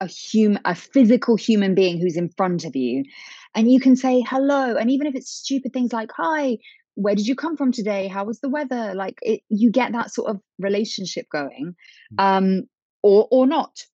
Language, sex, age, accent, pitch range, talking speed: English, female, 20-39, British, 185-230 Hz, 200 wpm